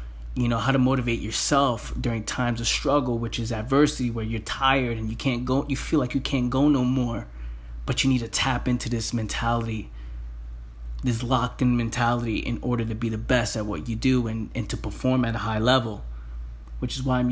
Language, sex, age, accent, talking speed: English, male, 20-39, American, 215 wpm